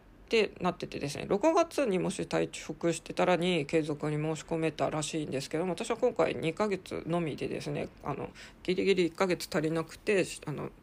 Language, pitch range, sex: Japanese, 160-215 Hz, female